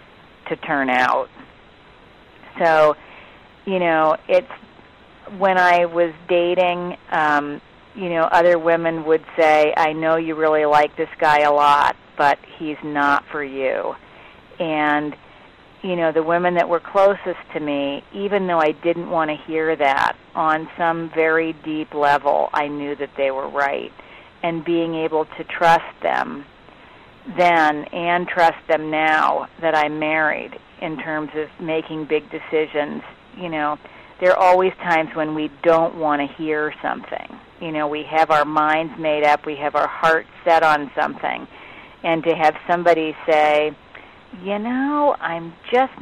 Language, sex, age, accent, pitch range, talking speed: English, female, 40-59, American, 150-175 Hz, 155 wpm